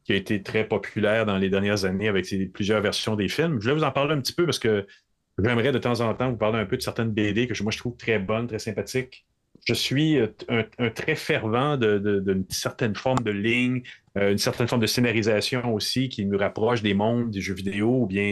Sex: male